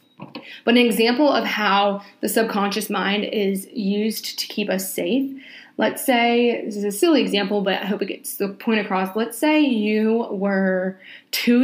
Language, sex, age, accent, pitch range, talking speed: English, female, 20-39, American, 195-250 Hz, 175 wpm